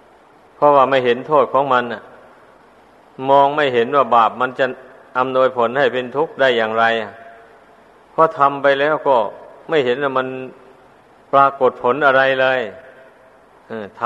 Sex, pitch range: male, 130-150 Hz